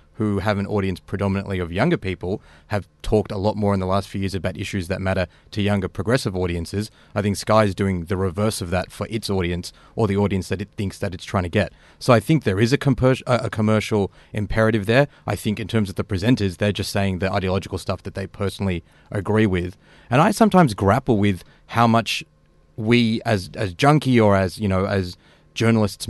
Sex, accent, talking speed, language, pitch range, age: male, Australian, 215 wpm, English, 95-110 Hz, 30-49